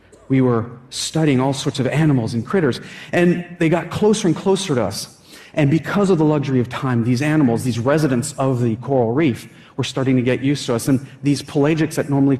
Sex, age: male, 40-59